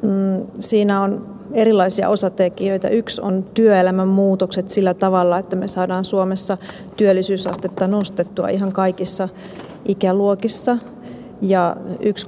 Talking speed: 105 wpm